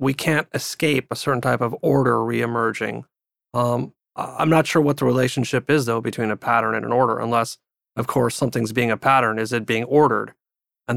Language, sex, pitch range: English, male, 115-145 Hz